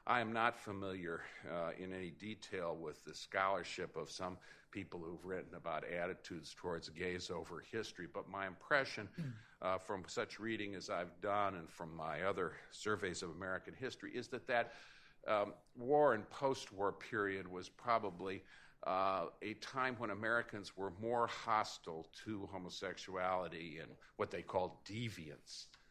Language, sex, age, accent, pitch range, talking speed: English, male, 50-69, American, 90-115 Hz, 150 wpm